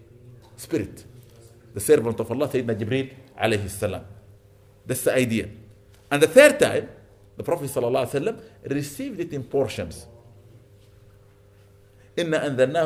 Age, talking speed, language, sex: 50-69, 105 wpm, English, male